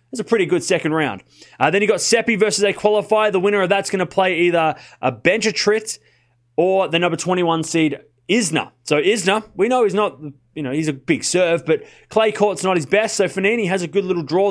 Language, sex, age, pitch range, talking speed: English, male, 20-39, 150-205 Hz, 230 wpm